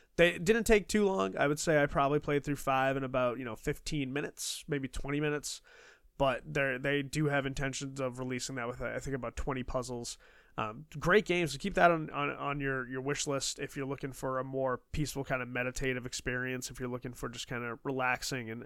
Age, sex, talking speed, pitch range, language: 20-39, male, 220 wpm, 130-155 Hz, English